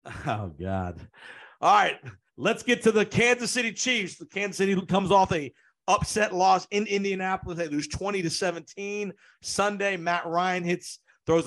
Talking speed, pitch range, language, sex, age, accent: 165 wpm, 150-185 Hz, English, male, 50-69, American